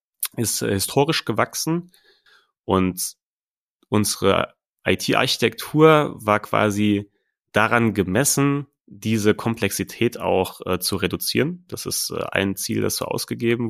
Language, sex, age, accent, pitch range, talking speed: German, male, 30-49, German, 95-115 Hz, 105 wpm